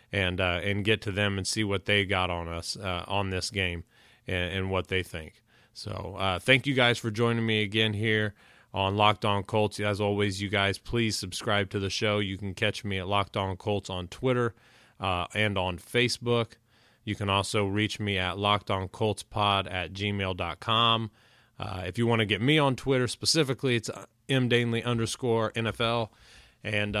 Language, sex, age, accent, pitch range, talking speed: English, male, 30-49, American, 95-115 Hz, 190 wpm